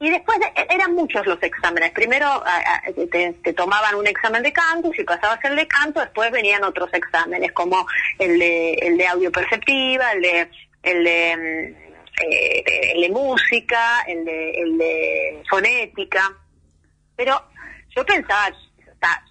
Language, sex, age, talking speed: Spanish, female, 30-49, 165 wpm